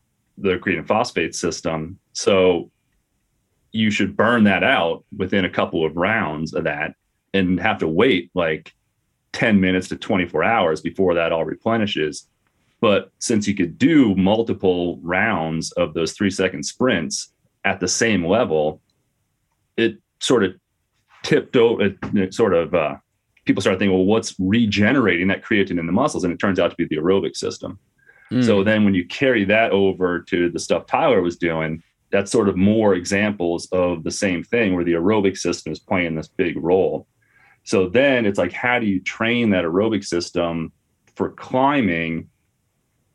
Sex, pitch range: male, 85-105 Hz